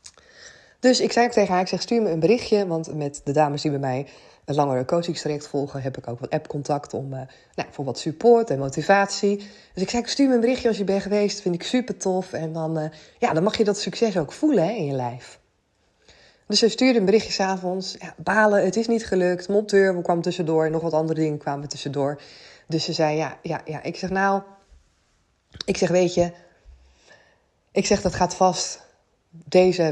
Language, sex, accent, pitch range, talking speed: Dutch, female, Dutch, 135-195 Hz, 220 wpm